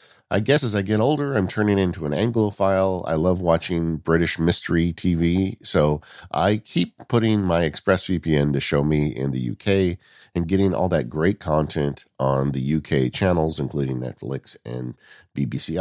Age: 50-69